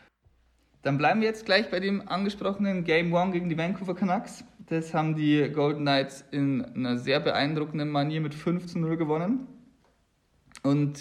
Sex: male